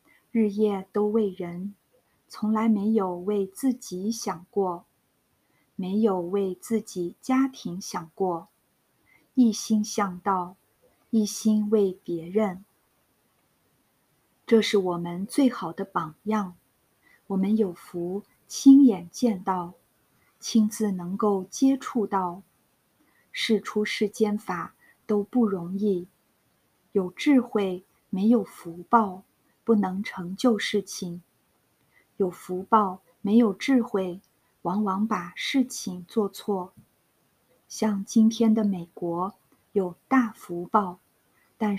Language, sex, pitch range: Chinese, female, 185-220 Hz